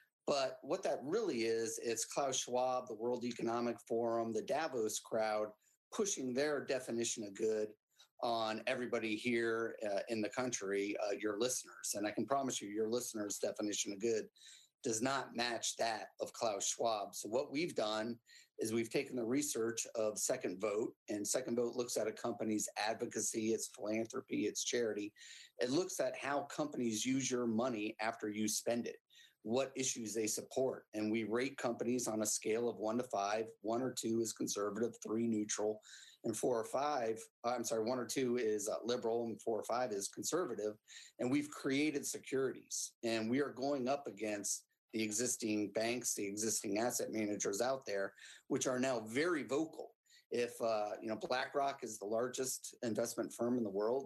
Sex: male